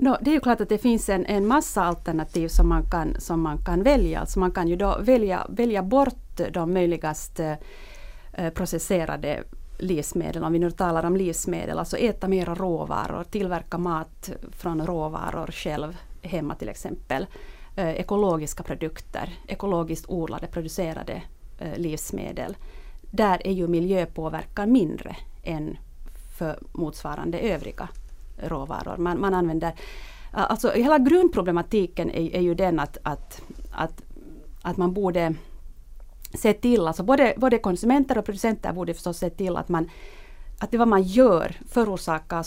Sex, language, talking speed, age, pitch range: female, Finnish, 145 wpm, 30-49, 170-215 Hz